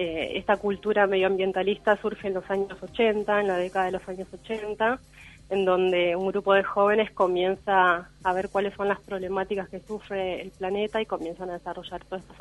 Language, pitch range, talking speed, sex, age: Spanish, 190-220 Hz, 185 wpm, female, 30-49